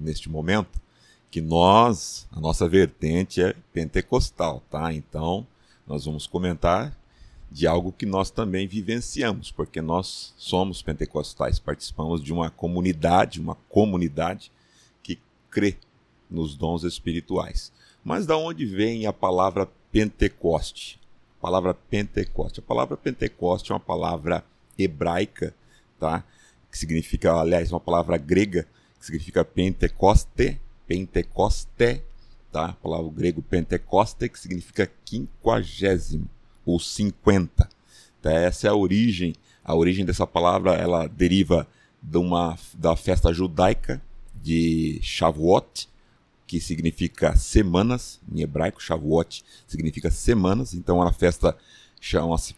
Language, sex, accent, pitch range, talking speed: Portuguese, male, Brazilian, 80-95 Hz, 120 wpm